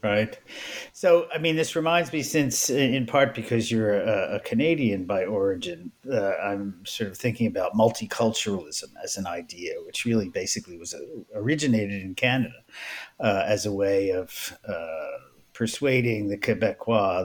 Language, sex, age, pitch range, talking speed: English, male, 50-69, 100-125 Hz, 155 wpm